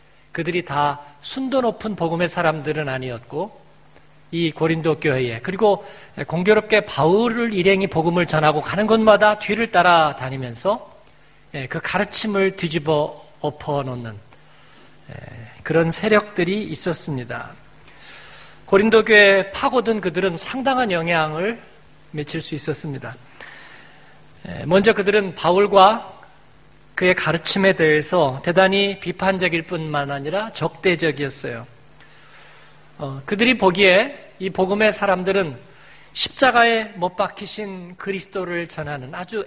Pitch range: 150-200 Hz